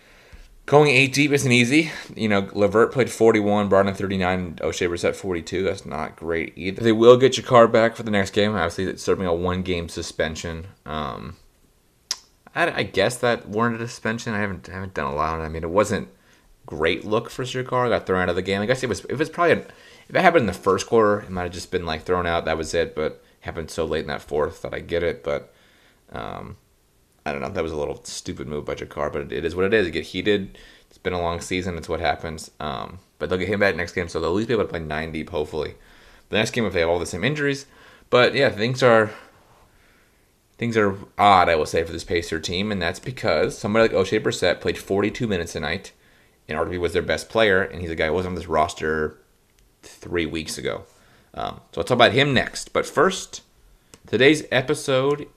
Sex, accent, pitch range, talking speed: male, American, 85-115 Hz, 240 wpm